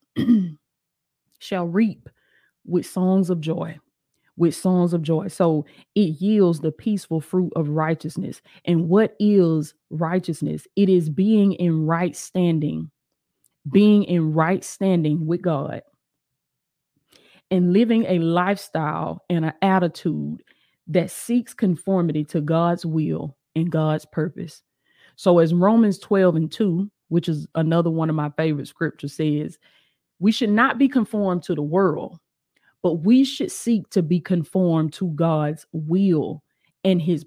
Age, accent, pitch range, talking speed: 20-39, American, 160-200 Hz, 135 wpm